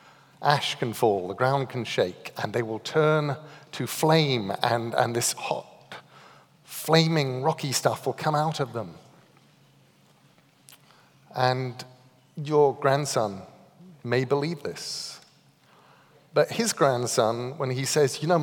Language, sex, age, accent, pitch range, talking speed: English, male, 40-59, British, 120-155 Hz, 125 wpm